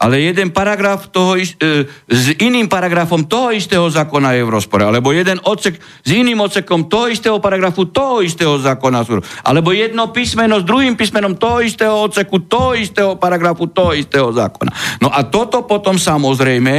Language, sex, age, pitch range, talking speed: Slovak, male, 60-79, 130-190 Hz, 165 wpm